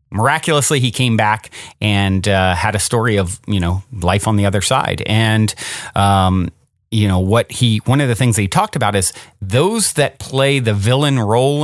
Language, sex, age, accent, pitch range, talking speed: English, male, 30-49, American, 100-125 Hz, 195 wpm